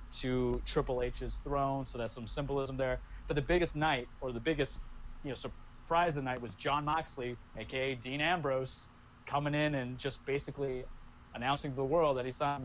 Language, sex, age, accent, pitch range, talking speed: English, male, 20-39, American, 120-145 Hz, 190 wpm